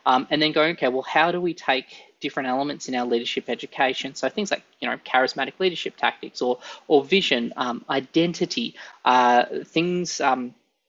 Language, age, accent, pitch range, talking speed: English, 20-39, Australian, 130-170 Hz, 165 wpm